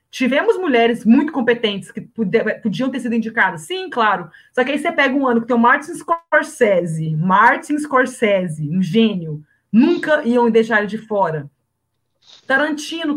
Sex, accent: female, Brazilian